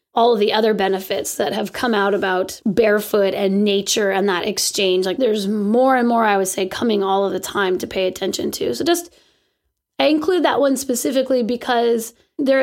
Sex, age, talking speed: female, 20-39, 200 wpm